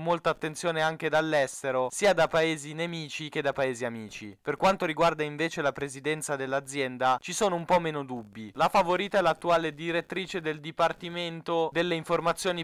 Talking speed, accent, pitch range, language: 160 wpm, native, 140-170 Hz, Italian